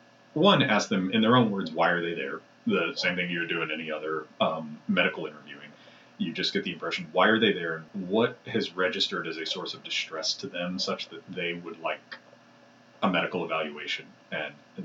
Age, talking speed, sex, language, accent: 30-49, 210 wpm, male, English, American